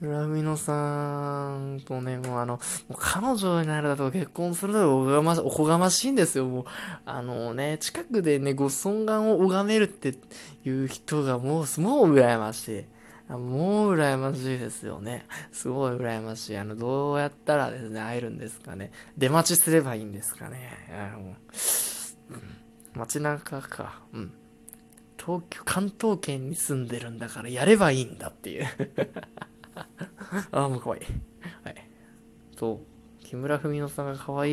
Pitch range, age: 120-175 Hz, 20-39